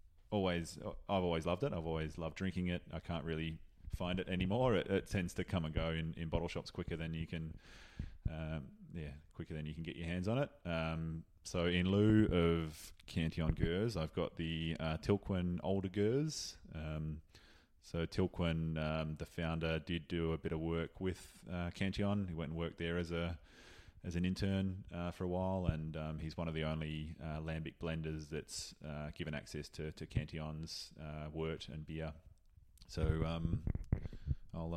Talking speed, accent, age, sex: 190 wpm, Australian, 20-39, male